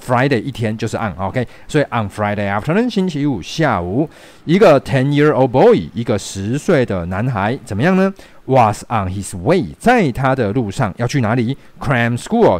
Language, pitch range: Chinese, 100-140 Hz